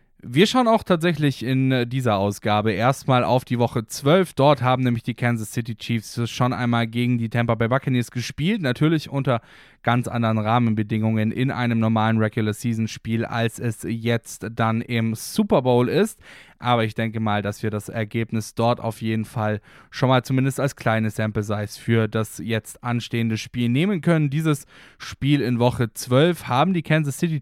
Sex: male